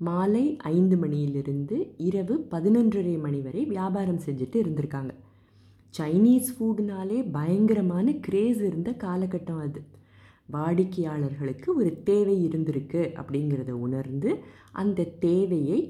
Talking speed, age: 100 wpm, 20-39